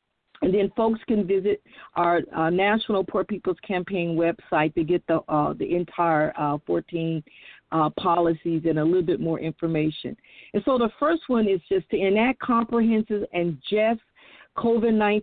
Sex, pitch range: female, 185-235 Hz